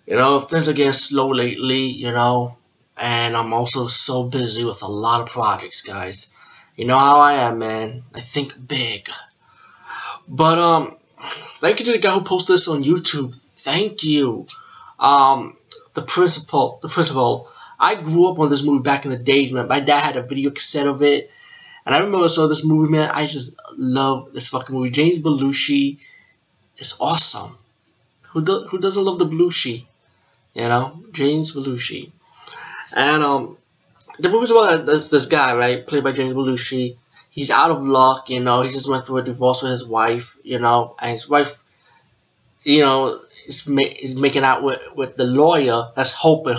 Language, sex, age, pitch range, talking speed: English, male, 20-39, 125-150 Hz, 180 wpm